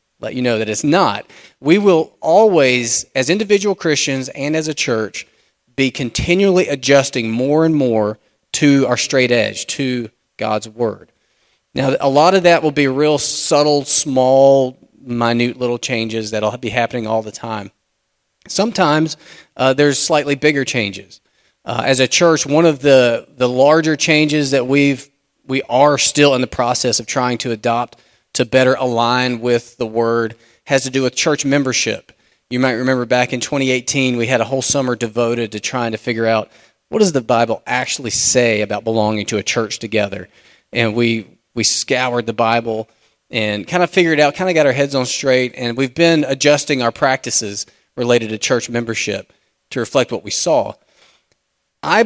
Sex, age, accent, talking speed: male, 30-49, American, 175 wpm